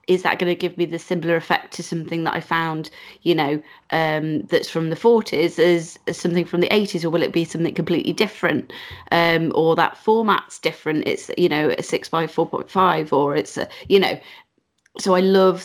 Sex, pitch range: female, 165-185 Hz